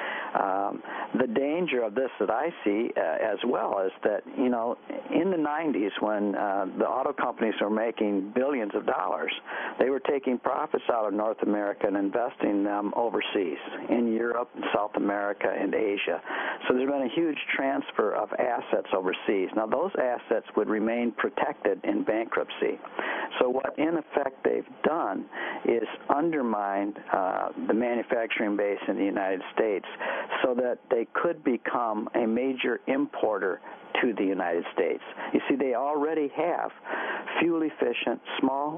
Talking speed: 155 wpm